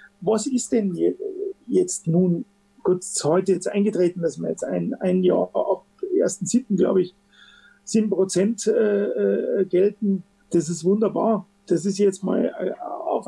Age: 40-59